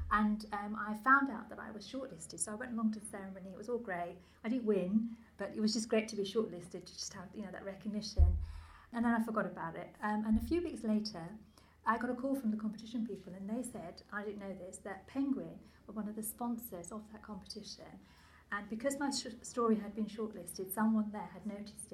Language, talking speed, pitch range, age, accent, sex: English, 240 wpm, 190-230 Hz, 40-59, British, female